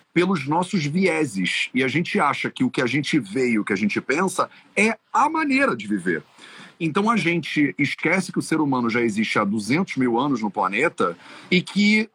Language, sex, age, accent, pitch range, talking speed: Portuguese, male, 40-59, Brazilian, 130-220 Hz, 205 wpm